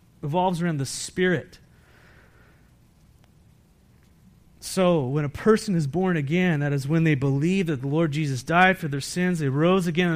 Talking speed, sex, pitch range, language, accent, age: 160 wpm, male, 135-175 Hz, English, American, 30-49